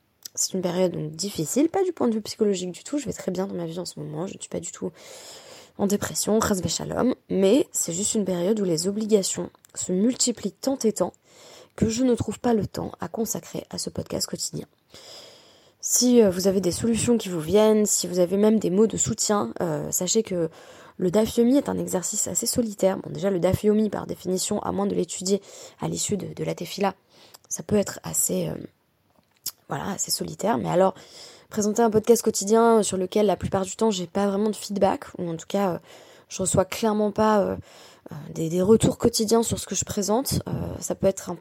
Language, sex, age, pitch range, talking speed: French, female, 20-39, 185-225 Hz, 215 wpm